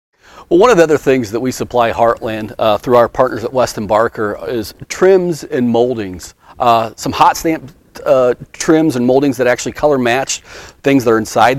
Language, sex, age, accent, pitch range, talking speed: English, male, 40-59, American, 110-135 Hz, 190 wpm